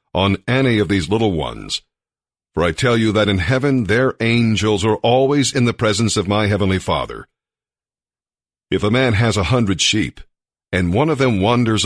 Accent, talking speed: American, 180 wpm